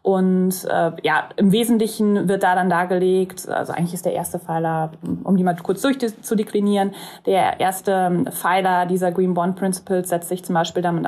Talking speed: 175 wpm